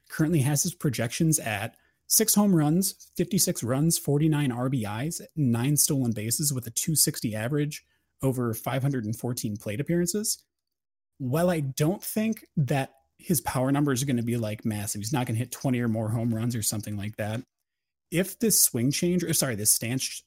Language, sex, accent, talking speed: English, male, American, 175 wpm